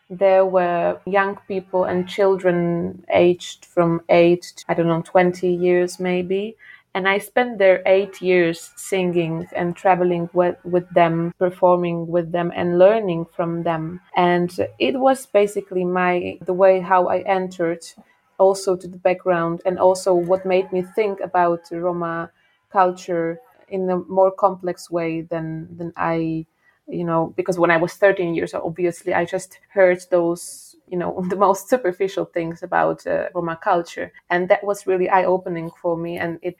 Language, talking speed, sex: English, 165 wpm, female